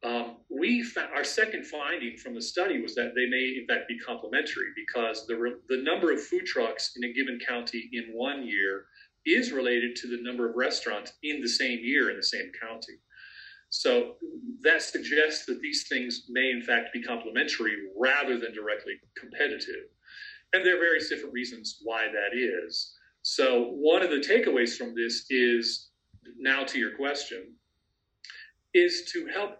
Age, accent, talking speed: 40-59, American, 175 wpm